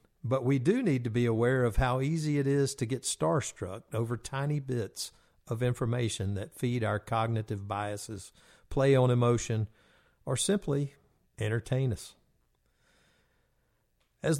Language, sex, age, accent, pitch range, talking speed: English, male, 50-69, American, 105-135 Hz, 140 wpm